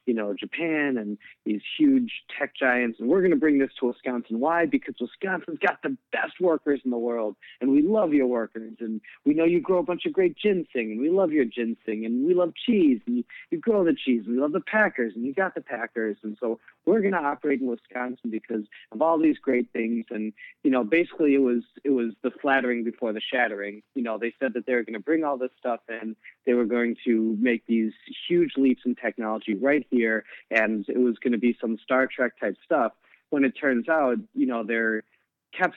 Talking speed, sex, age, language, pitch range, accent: 225 wpm, male, 40-59, English, 115-155 Hz, American